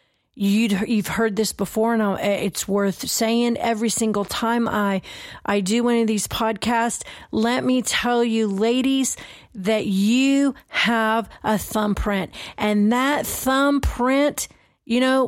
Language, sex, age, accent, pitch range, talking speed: English, female, 40-59, American, 215-255 Hz, 130 wpm